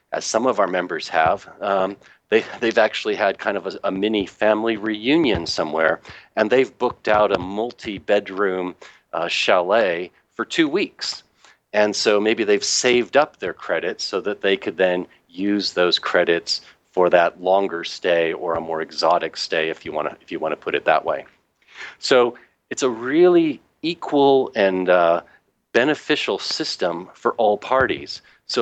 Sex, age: male, 40-59